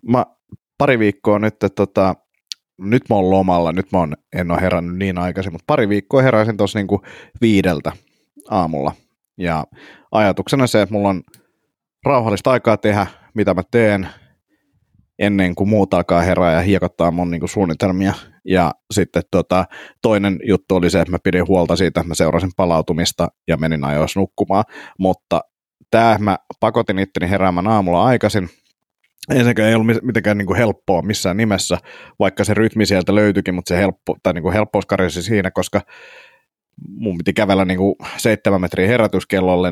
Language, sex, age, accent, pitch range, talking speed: Finnish, male, 30-49, native, 95-110 Hz, 160 wpm